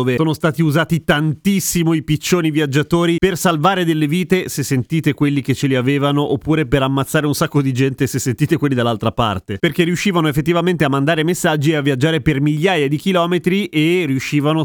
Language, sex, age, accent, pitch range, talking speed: Italian, male, 30-49, native, 130-165 Hz, 190 wpm